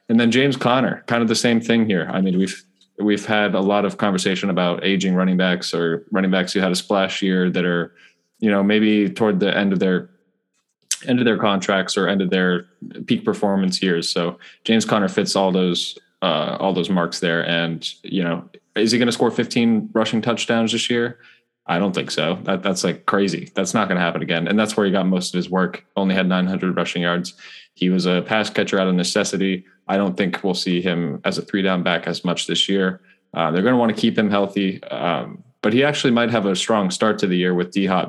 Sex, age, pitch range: male, 20-39, 90-105 Hz